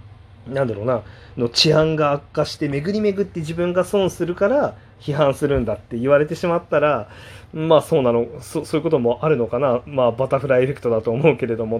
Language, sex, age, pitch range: Japanese, male, 30-49, 115-155 Hz